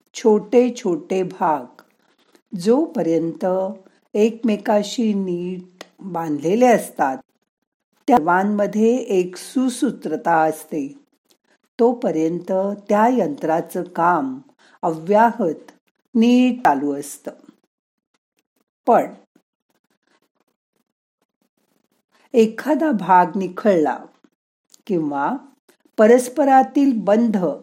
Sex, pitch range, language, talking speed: female, 175-245 Hz, Marathi, 55 wpm